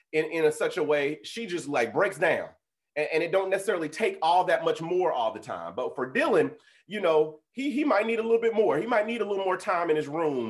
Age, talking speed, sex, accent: 30-49, 270 wpm, male, American